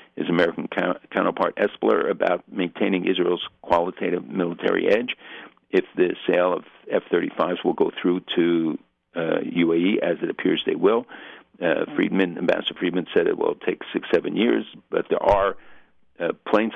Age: 60-79